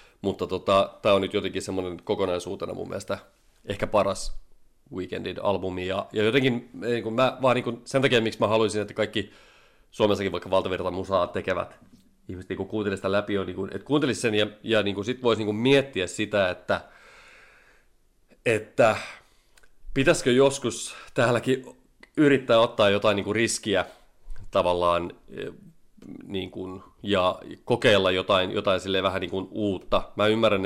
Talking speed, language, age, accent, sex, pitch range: 150 wpm, Finnish, 30-49, native, male, 95-110 Hz